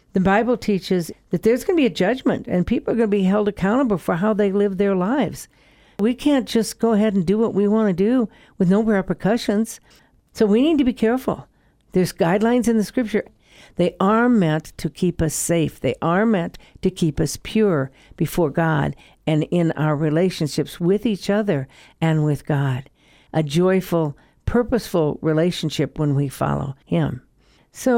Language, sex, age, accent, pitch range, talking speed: English, female, 60-79, American, 175-225 Hz, 180 wpm